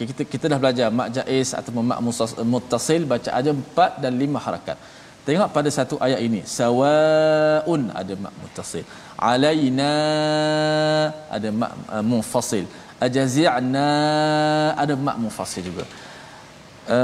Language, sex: Malayalam, male